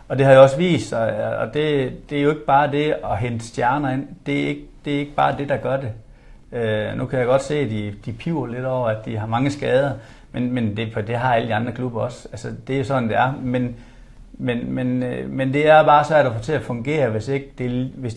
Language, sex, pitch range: Danish, male, 110-135 Hz